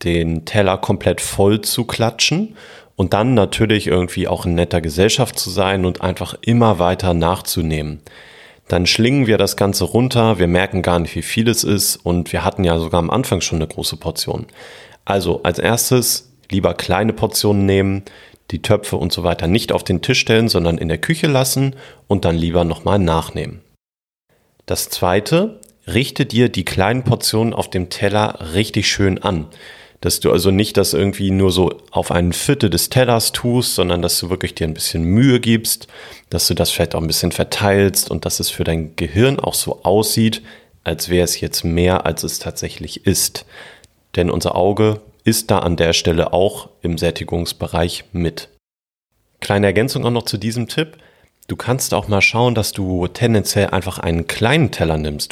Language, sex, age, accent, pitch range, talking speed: German, male, 40-59, German, 85-110 Hz, 180 wpm